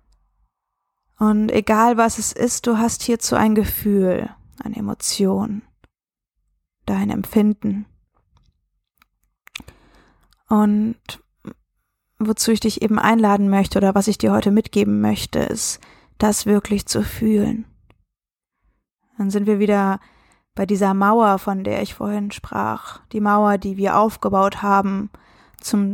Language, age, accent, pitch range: German, 20-39, German, 195-225 Hz